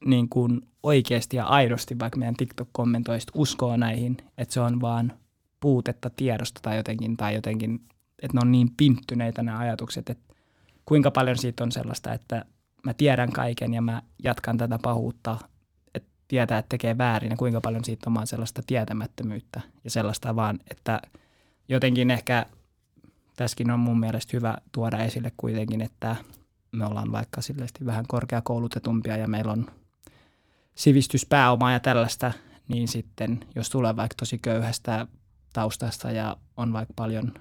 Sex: male